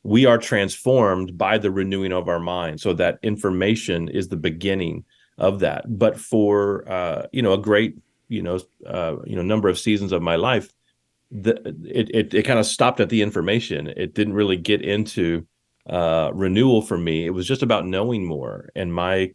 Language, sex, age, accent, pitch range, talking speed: English, male, 30-49, American, 85-105 Hz, 190 wpm